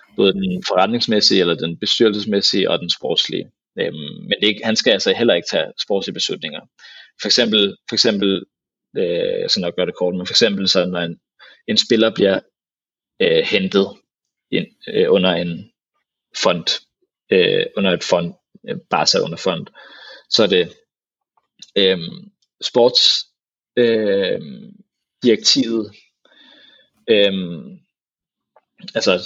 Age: 30-49